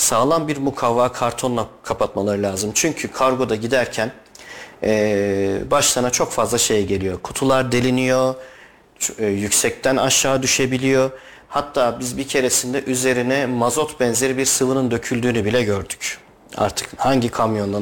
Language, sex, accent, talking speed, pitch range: Turkish, male, native, 120 wpm, 110-130 Hz